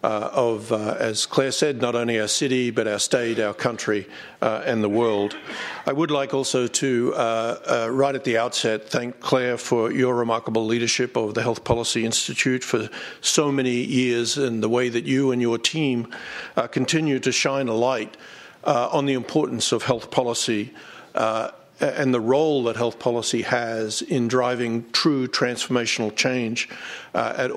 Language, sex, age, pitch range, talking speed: English, male, 50-69, 115-135 Hz, 175 wpm